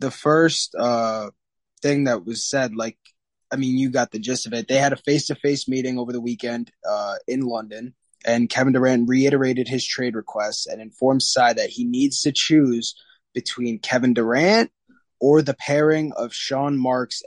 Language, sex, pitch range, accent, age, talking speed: English, male, 120-140 Hz, American, 20-39, 175 wpm